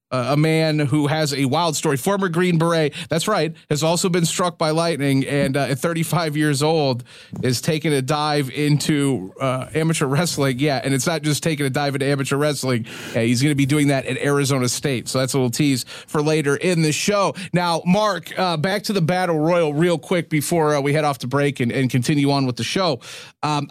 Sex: male